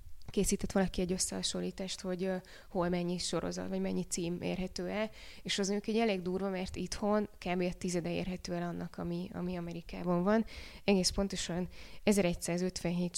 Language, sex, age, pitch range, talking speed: Hungarian, female, 20-39, 175-195 Hz, 155 wpm